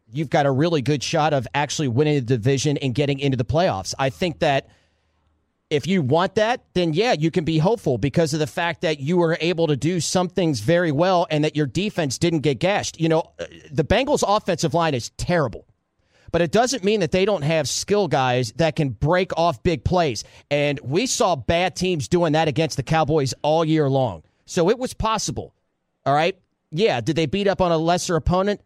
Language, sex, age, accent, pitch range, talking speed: English, male, 40-59, American, 145-180 Hz, 215 wpm